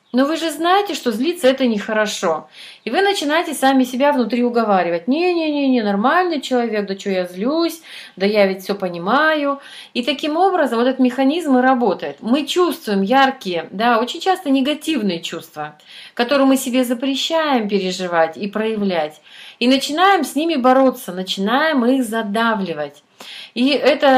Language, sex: Russian, female